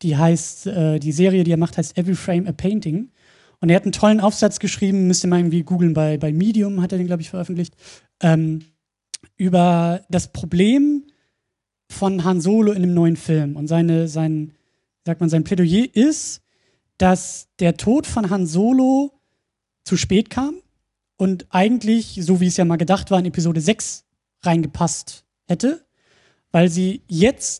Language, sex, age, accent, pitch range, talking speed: German, male, 20-39, German, 170-205 Hz, 170 wpm